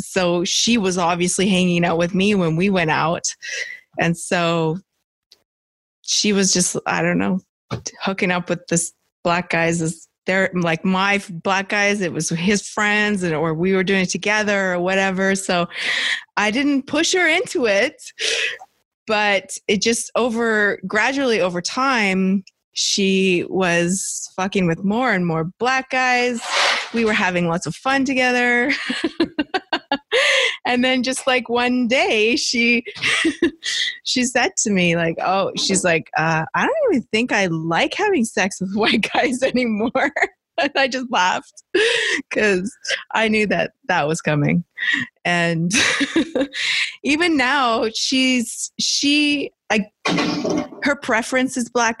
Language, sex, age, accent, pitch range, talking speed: English, female, 20-39, American, 185-265 Hz, 145 wpm